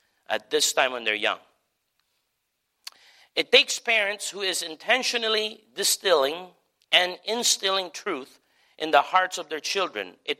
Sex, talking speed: male, 135 wpm